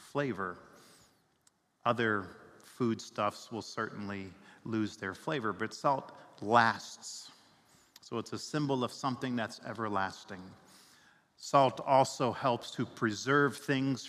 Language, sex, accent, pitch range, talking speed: English, male, American, 105-120 Hz, 105 wpm